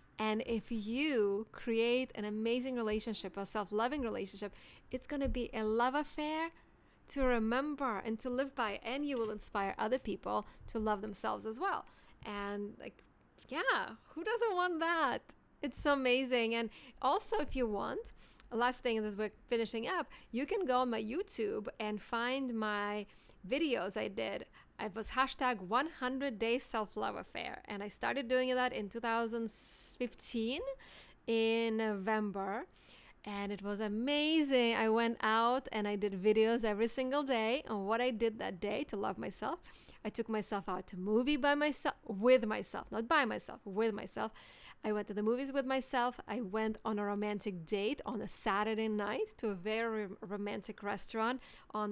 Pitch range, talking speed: 210-255 Hz, 170 wpm